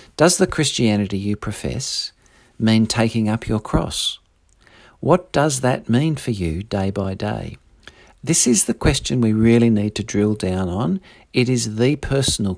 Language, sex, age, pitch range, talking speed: English, male, 50-69, 100-120 Hz, 160 wpm